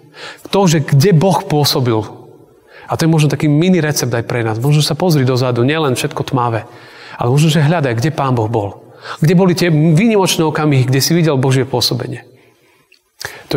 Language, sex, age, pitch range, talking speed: Slovak, male, 40-59, 130-165 Hz, 175 wpm